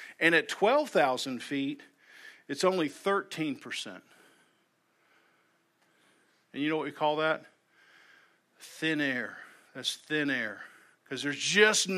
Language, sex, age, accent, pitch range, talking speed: English, male, 50-69, American, 155-210 Hz, 110 wpm